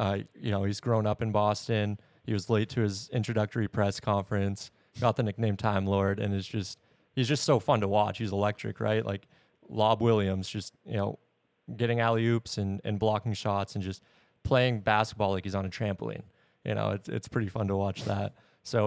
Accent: American